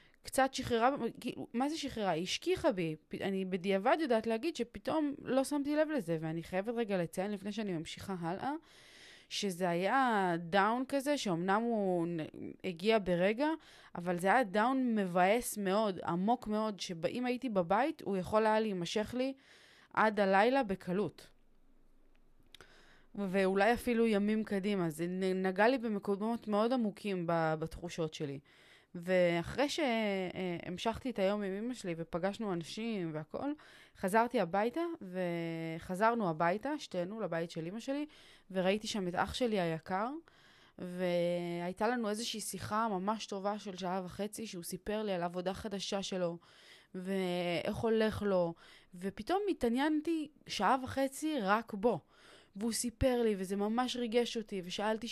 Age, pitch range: 20-39, 185-235 Hz